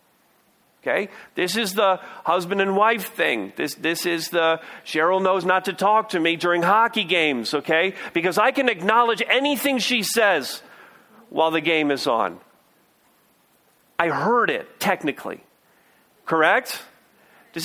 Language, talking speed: English, 140 wpm